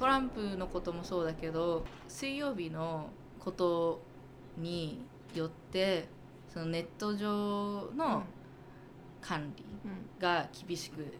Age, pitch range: 20-39, 160-210 Hz